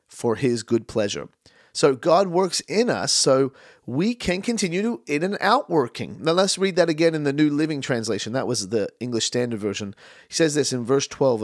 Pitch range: 120-170 Hz